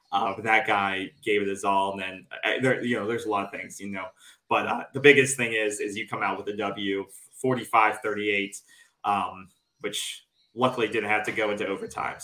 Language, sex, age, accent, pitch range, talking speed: English, male, 30-49, American, 115-165 Hz, 220 wpm